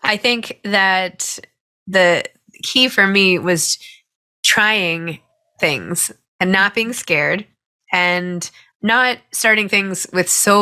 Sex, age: female, 20-39